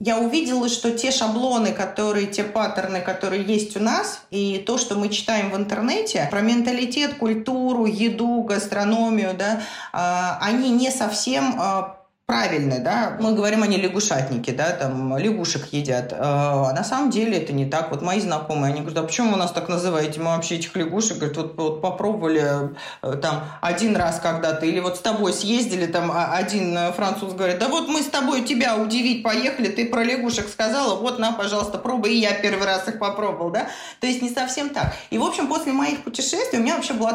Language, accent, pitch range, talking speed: Russian, native, 180-235 Hz, 185 wpm